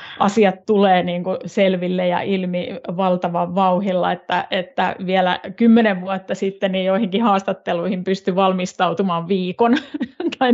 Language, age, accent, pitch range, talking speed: Finnish, 30-49, native, 180-205 Hz, 125 wpm